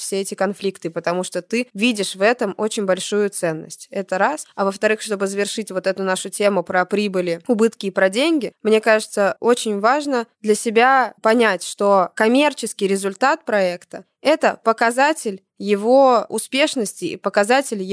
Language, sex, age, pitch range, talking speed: Russian, female, 20-39, 195-230 Hz, 150 wpm